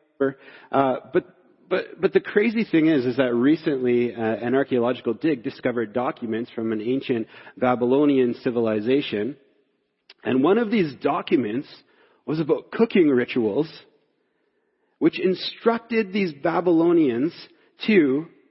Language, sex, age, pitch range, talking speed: English, male, 40-59, 150-245 Hz, 115 wpm